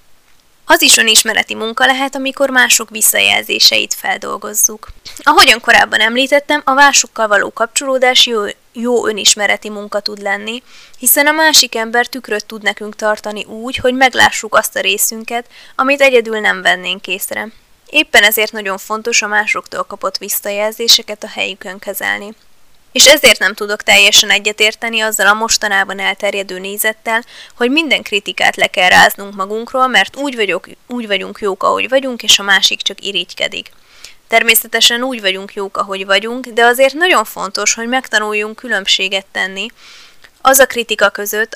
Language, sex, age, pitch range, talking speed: Hungarian, female, 20-39, 200-250 Hz, 145 wpm